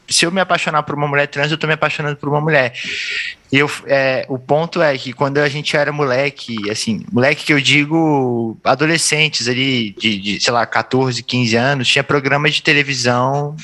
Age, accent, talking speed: 20-39, Brazilian, 190 wpm